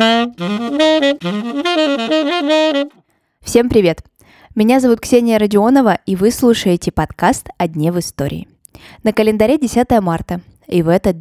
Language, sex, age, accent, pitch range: Russian, female, 20-39, native, 170-235 Hz